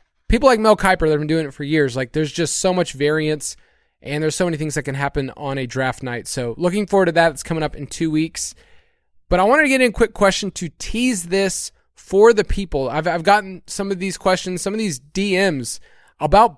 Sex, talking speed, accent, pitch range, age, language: male, 240 wpm, American, 150-195 Hz, 20-39, English